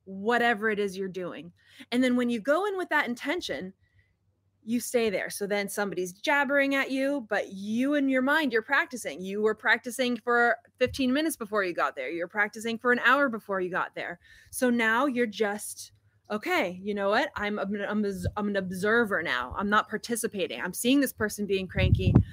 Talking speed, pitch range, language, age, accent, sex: 195 wpm, 195-265 Hz, English, 20-39, American, female